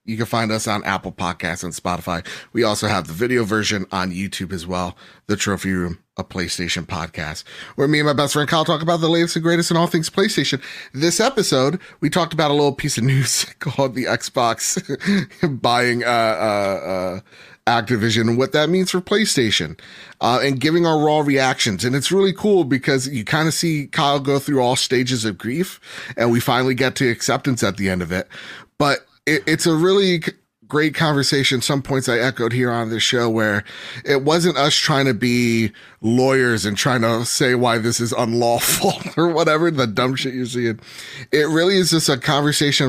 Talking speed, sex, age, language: 200 wpm, male, 30-49, English